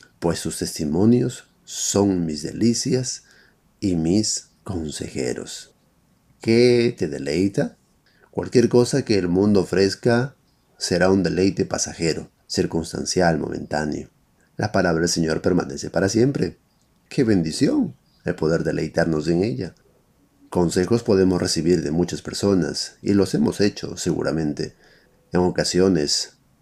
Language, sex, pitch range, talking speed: Spanish, male, 85-115 Hz, 115 wpm